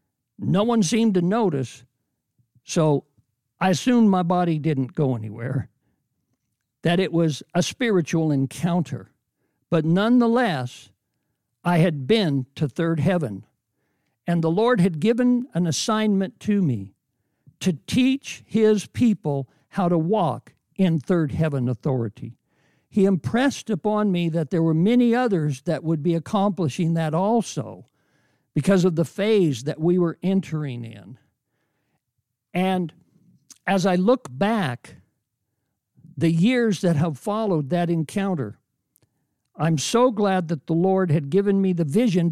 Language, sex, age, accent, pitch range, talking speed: English, male, 60-79, American, 140-195 Hz, 135 wpm